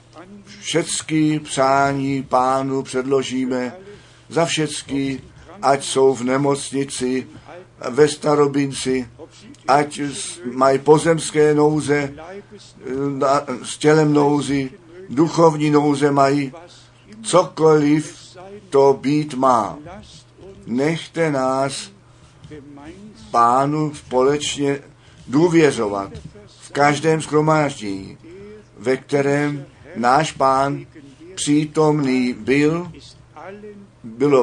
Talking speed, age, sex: 70 wpm, 50-69, male